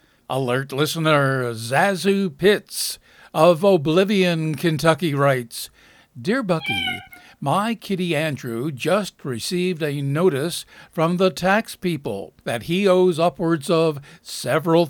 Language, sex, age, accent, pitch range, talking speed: English, male, 60-79, American, 150-185 Hz, 110 wpm